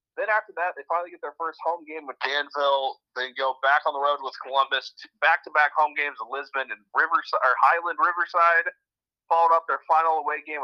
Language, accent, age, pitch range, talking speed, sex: English, American, 30-49, 135-165 Hz, 210 wpm, male